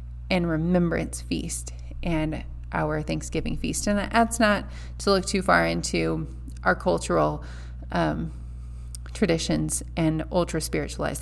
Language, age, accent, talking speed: English, 20-39, American, 110 wpm